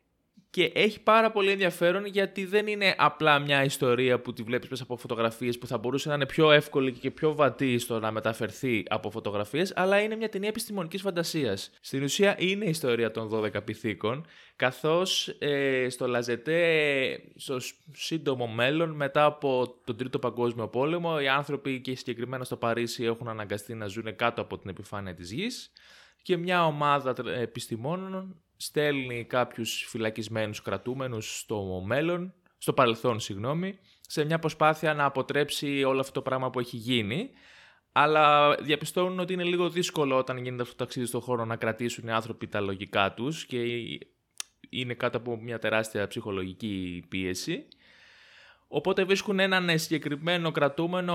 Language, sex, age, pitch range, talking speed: Greek, male, 20-39, 115-160 Hz, 155 wpm